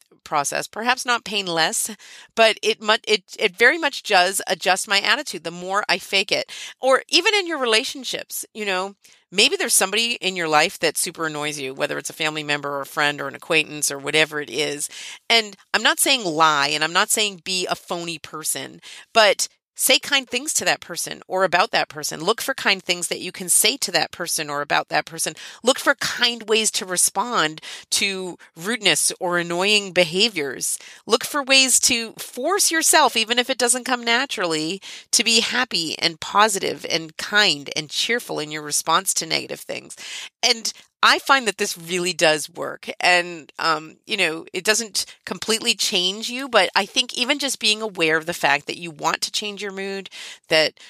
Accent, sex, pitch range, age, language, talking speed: American, female, 155-220 Hz, 40-59, English, 190 wpm